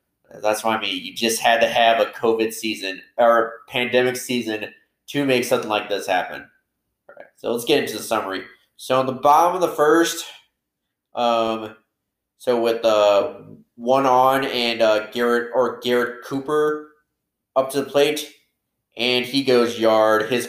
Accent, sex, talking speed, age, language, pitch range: American, male, 170 wpm, 20-39, English, 115-130 Hz